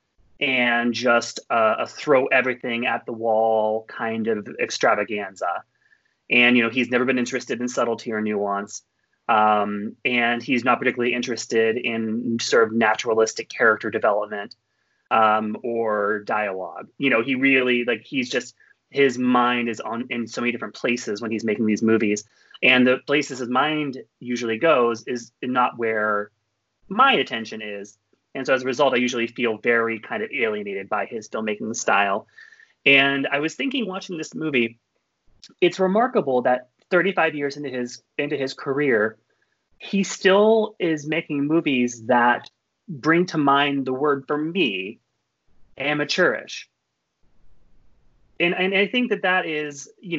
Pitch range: 115-145 Hz